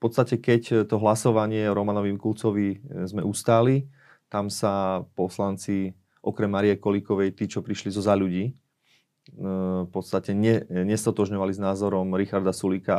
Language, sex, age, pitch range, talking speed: Slovak, male, 30-49, 100-115 Hz, 140 wpm